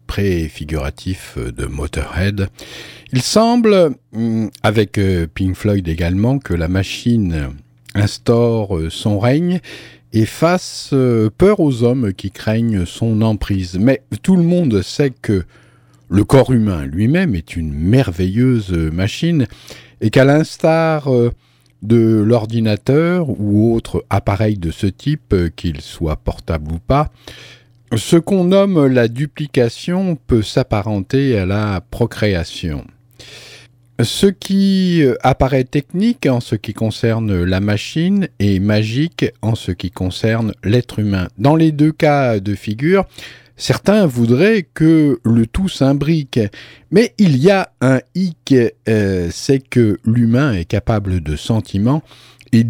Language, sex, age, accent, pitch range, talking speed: French, male, 50-69, French, 100-145 Hz, 125 wpm